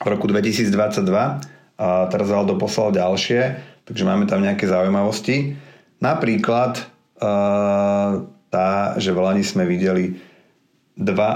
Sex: male